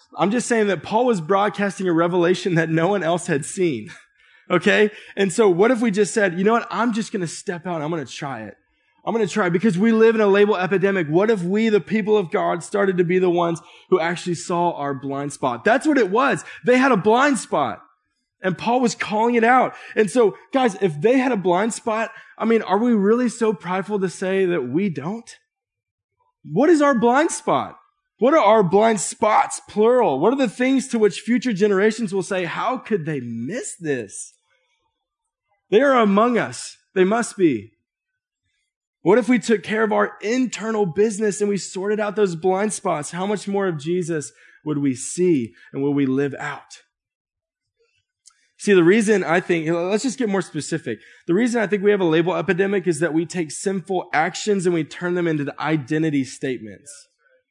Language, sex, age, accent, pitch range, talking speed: English, male, 20-39, American, 175-230 Hz, 205 wpm